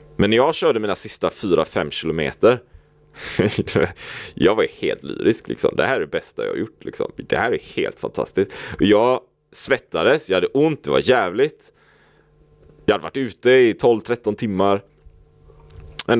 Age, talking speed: 30-49, 165 wpm